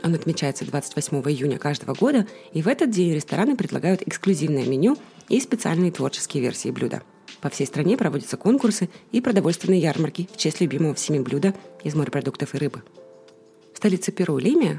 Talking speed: 160 wpm